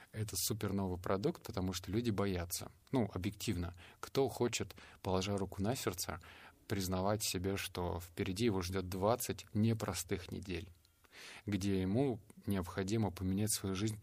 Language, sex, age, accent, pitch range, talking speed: Russian, male, 20-39, native, 95-110 Hz, 135 wpm